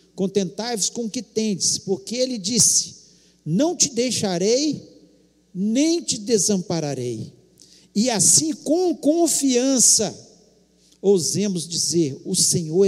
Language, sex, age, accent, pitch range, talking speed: Portuguese, male, 50-69, Brazilian, 150-245 Hz, 100 wpm